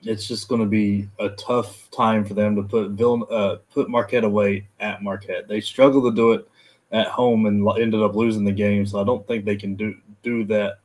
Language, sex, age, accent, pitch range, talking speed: English, male, 20-39, American, 100-115 Hz, 225 wpm